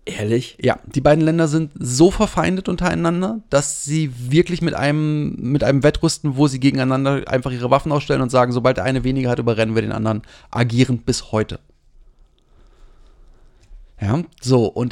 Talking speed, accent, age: 160 wpm, German, 30-49